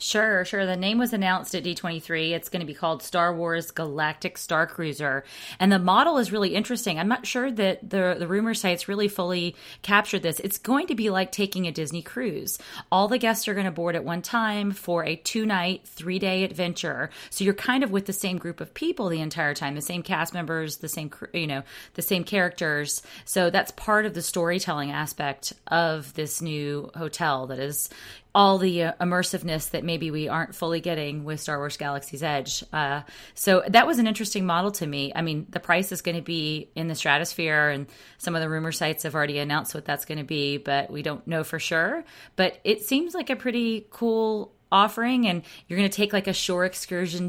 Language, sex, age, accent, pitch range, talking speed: English, female, 30-49, American, 155-195 Hz, 215 wpm